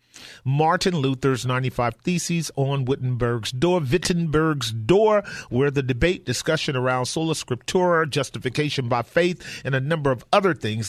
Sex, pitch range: male, 125-160 Hz